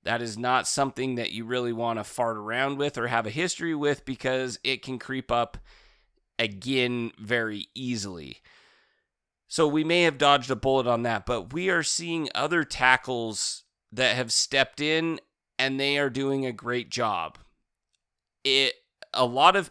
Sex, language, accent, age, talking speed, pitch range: male, English, American, 30-49, 165 wpm, 120-150 Hz